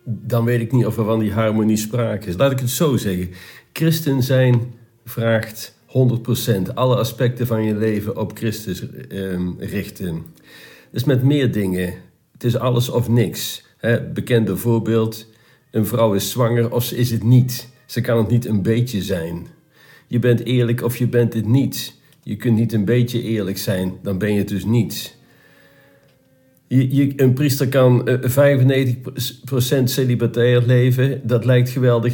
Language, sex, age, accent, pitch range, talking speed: Dutch, male, 50-69, Dutch, 110-125 Hz, 165 wpm